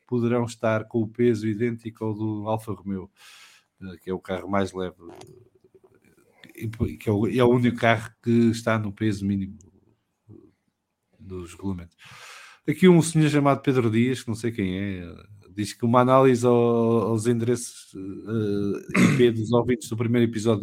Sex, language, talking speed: male, English, 150 wpm